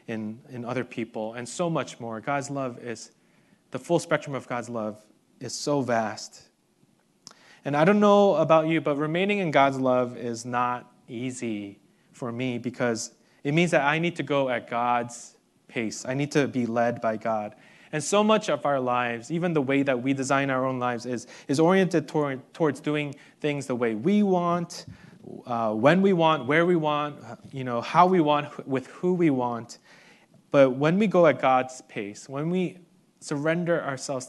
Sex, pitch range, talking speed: male, 120-155 Hz, 185 wpm